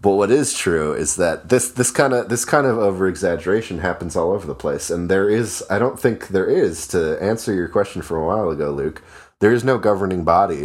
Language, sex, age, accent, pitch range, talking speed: English, male, 30-49, American, 75-95 Hz, 230 wpm